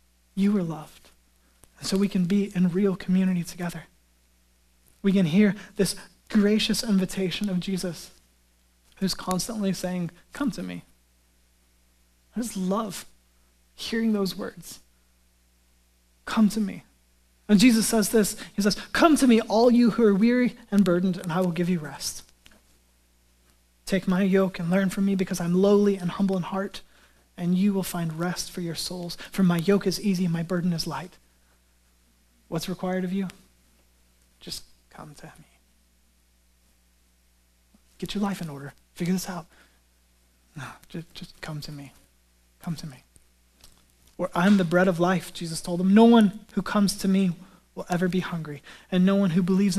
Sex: male